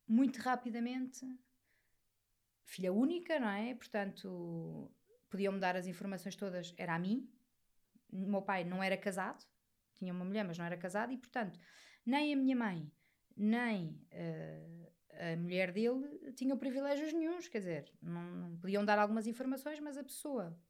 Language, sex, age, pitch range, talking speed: Portuguese, female, 20-39, 180-245 Hz, 155 wpm